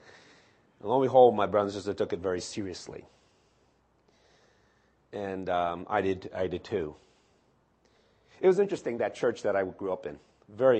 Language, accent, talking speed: English, American, 150 wpm